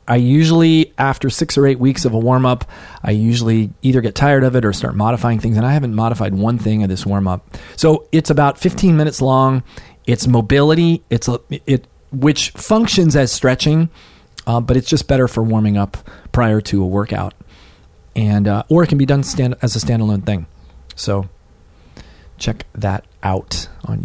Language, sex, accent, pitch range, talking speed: English, male, American, 100-140 Hz, 185 wpm